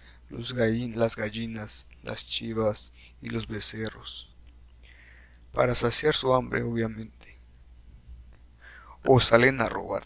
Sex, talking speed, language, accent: male, 105 wpm, Spanish, Mexican